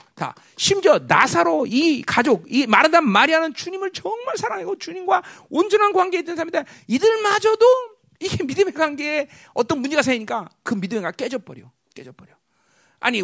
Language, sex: Korean, male